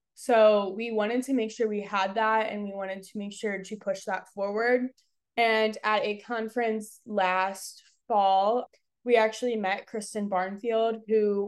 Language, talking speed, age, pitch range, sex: English, 160 wpm, 20-39, 195-225 Hz, female